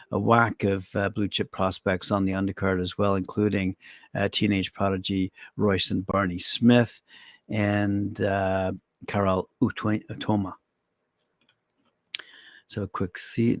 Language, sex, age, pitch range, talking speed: English, male, 60-79, 100-115 Hz, 130 wpm